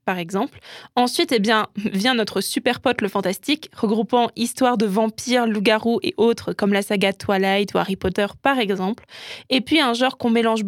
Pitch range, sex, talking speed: 210-245 Hz, female, 185 wpm